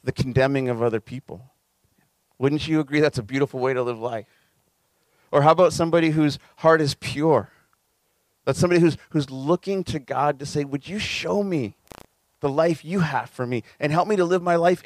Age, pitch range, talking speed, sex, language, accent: 30-49, 130-160 Hz, 200 wpm, male, English, American